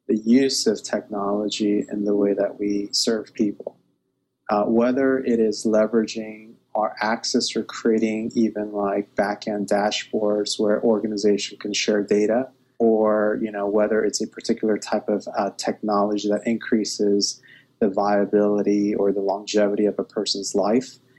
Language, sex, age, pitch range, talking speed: English, male, 30-49, 105-120 Hz, 145 wpm